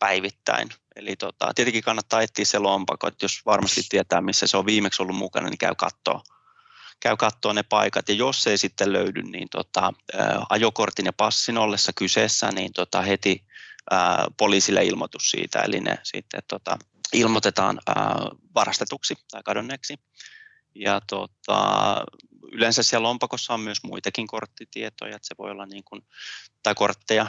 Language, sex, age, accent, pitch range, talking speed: Finnish, male, 20-39, native, 100-115 Hz, 155 wpm